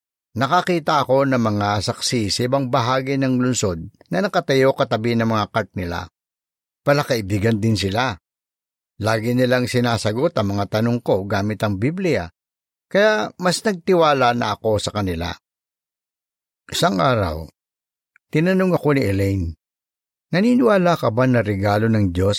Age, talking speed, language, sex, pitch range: 50-69, 135 wpm, Filipino, male, 100-140 Hz